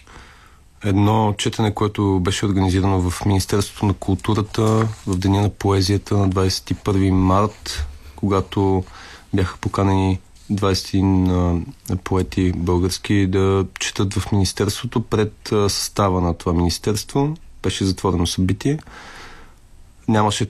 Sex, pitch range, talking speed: male, 90-105 Hz, 105 wpm